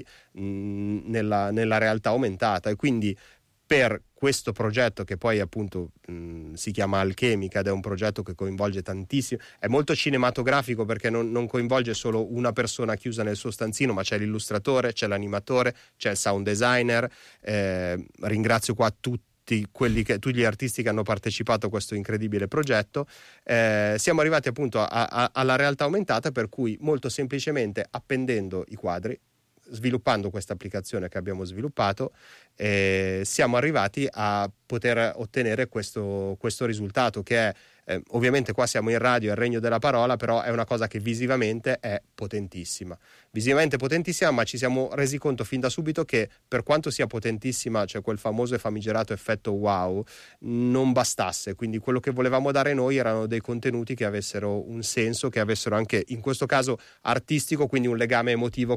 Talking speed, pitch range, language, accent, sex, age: 165 wpm, 105-125 Hz, Italian, native, male, 30-49